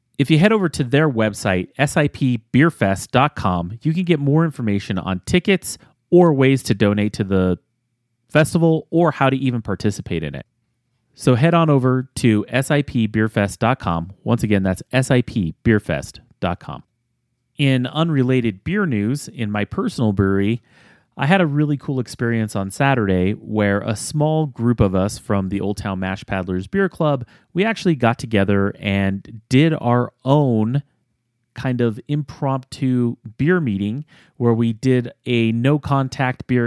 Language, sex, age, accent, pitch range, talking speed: English, male, 30-49, American, 105-135 Hz, 145 wpm